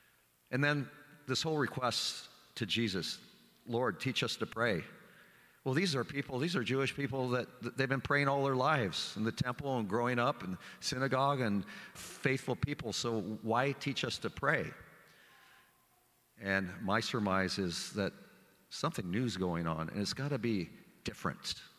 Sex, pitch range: male, 100-135 Hz